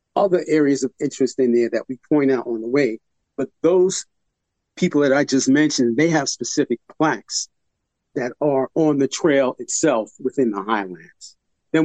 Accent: American